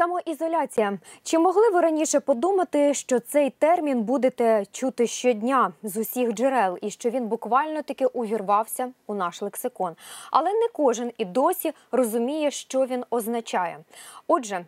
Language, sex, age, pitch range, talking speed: Ukrainian, female, 20-39, 220-290 Hz, 135 wpm